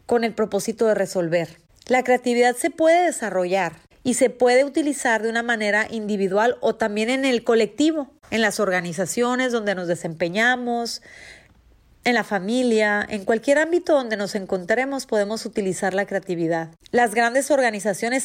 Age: 30-49